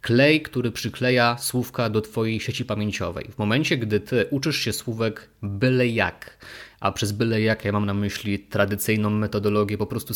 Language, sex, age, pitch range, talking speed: Polish, male, 20-39, 105-125 Hz, 170 wpm